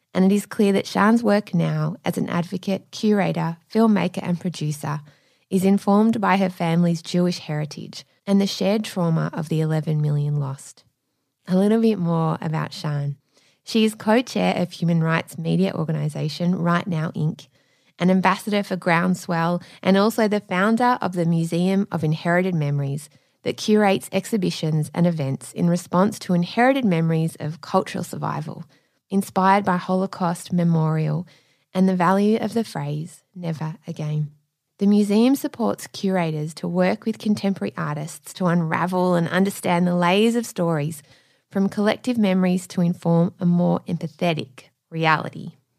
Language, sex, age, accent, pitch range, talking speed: English, female, 20-39, Australian, 160-195 Hz, 150 wpm